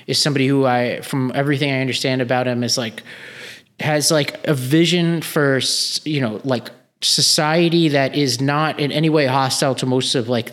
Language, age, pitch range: English, 30-49, 130-160 Hz